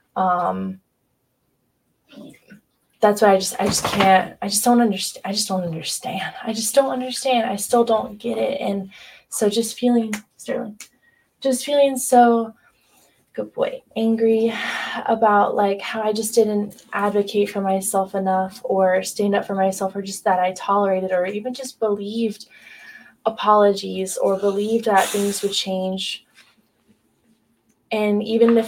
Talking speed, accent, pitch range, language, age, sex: 145 wpm, American, 190-225 Hz, English, 10-29, female